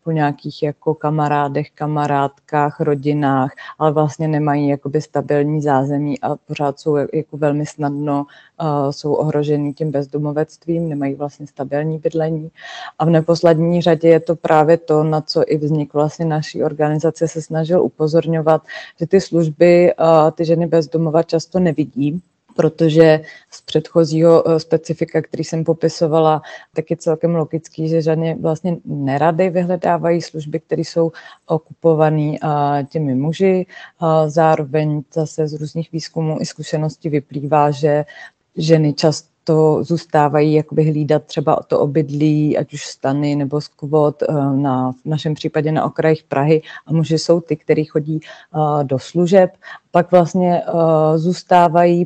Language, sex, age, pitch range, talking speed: Slovak, female, 30-49, 150-165 Hz, 135 wpm